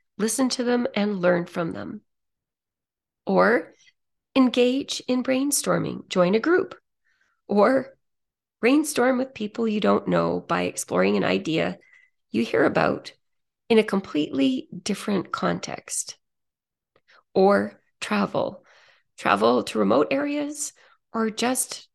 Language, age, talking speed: English, 30-49, 110 wpm